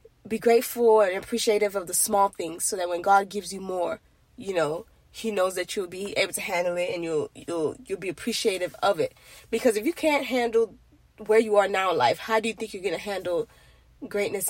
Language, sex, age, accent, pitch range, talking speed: English, female, 10-29, American, 180-225 Hz, 225 wpm